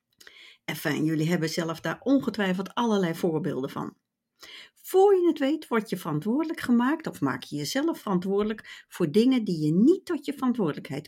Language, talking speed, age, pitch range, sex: Dutch, 160 wpm, 60-79, 185-275 Hz, female